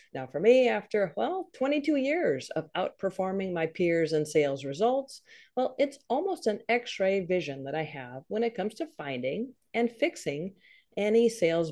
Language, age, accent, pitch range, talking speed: English, 50-69, American, 165-265 Hz, 165 wpm